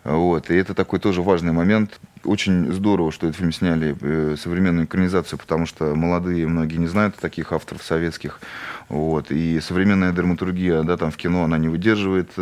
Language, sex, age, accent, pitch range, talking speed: Russian, male, 20-39, native, 85-105 Hz, 155 wpm